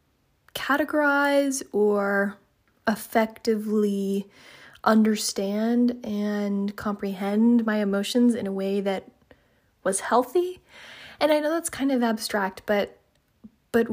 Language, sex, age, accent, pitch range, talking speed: English, female, 20-39, American, 200-240 Hz, 100 wpm